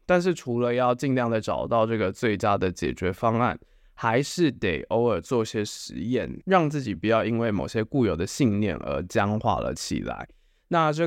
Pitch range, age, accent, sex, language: 105-130 Hz, 20-39, native, male, Chinese